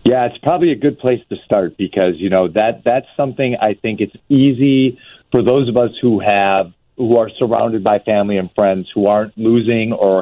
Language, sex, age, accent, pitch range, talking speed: English, male, 40-59, American, 100-120 Hz, 205 wpm